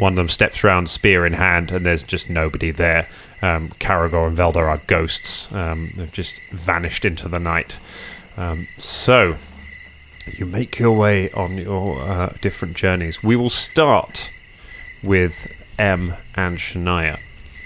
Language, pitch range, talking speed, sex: English, 85-100 Hz, 150 wpm, male